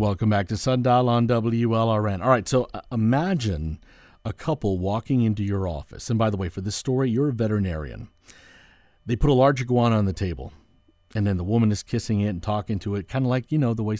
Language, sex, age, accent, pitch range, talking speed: English, male, 50-69, American, 100-135 Hz, 225 wpm